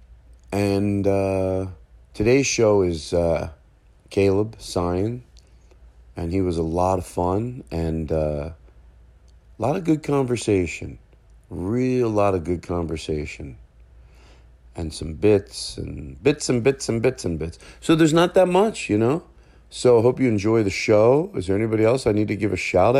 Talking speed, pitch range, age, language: 160 wpm, 80-110 Hz, 40-59, English